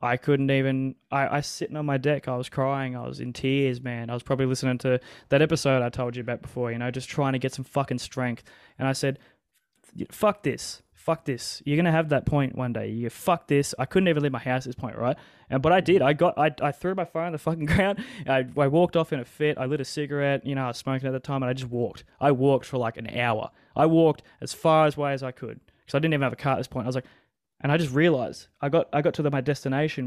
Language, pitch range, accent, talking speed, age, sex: English, 125-150 Hz, Australian, 285 wpm, 20-39, male